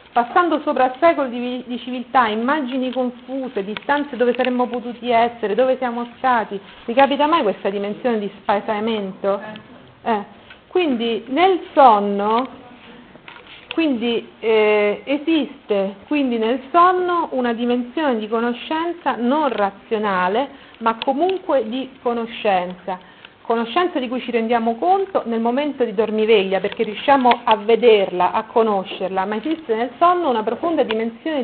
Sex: female